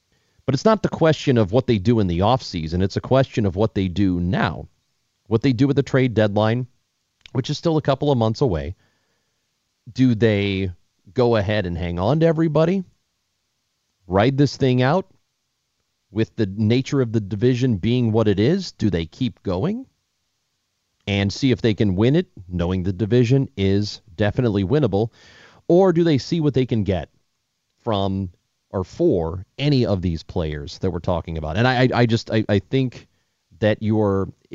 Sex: male